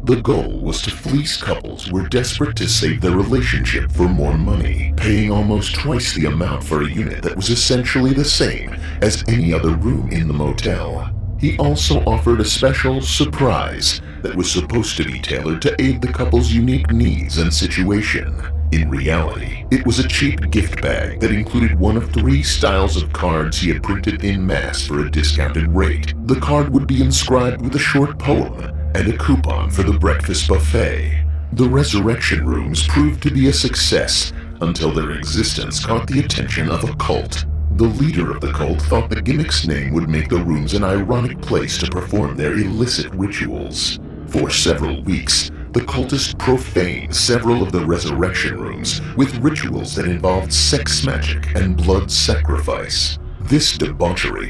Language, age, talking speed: English, 50-69, 175 wpm